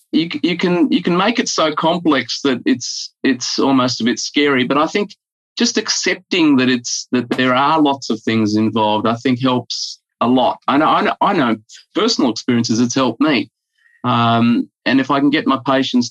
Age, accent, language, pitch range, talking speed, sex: 30-49, Australian, English, 115-145 Hz, 200 wpm, male